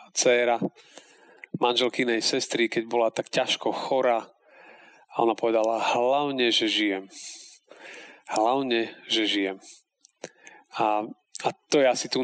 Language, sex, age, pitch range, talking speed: Slovak, male, 40-59, 120-185 Hz, 115 wpm